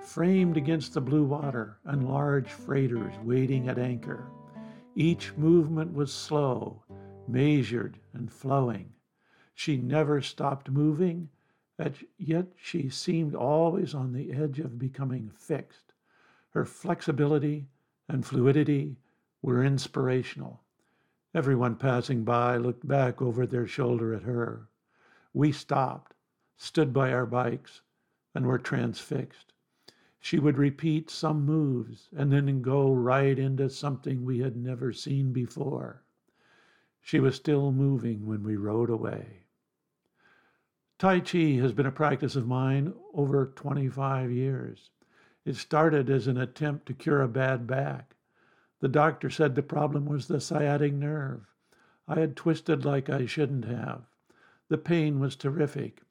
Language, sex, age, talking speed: English, male, 60-79, 130 wpm